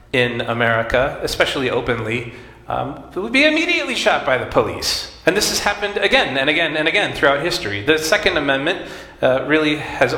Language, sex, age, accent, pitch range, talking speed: English, male, 40-59, American, 110-135 Hz, 175 wpm